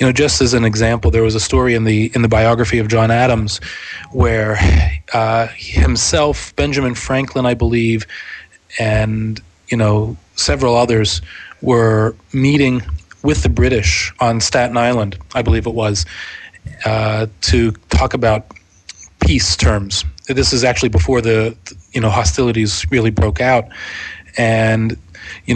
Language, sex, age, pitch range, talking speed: English, male, 30-49, 90-120 Hz, 145 wpm